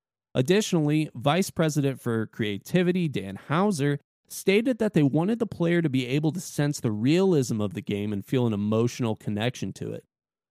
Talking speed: 170 wpm